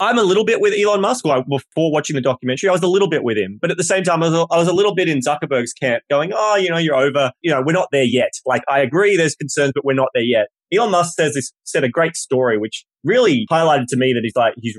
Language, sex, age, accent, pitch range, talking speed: English, male, 20-39, Australian, 130-170 Hz, 300 wpm